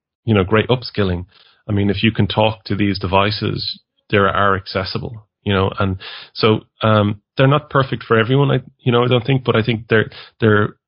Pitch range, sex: 100-115 Hz, male